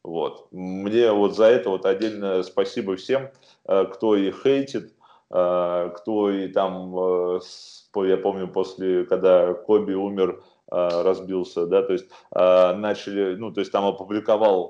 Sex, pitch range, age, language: male, 90-110 Hz, 20-39, Russian